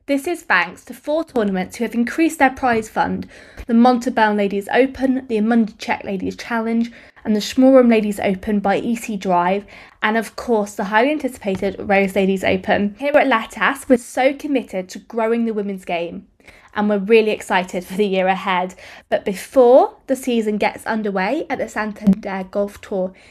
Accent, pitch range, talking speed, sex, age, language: British, 205-260 Hz, 170 wpm, female, 20-39, English